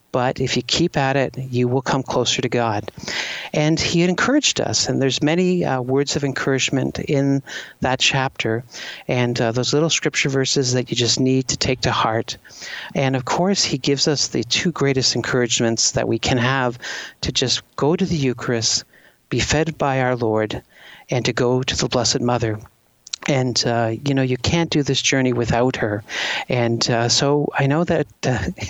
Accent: American